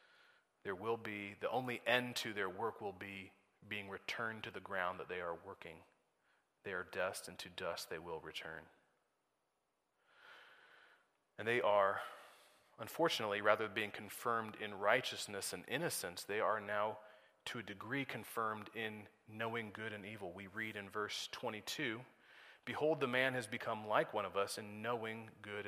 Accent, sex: American, male